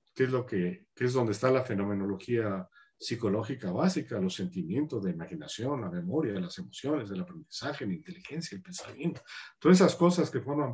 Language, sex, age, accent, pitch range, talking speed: Spanish, male, 50-69, Mexican, 125-190 Hz, 175 wpm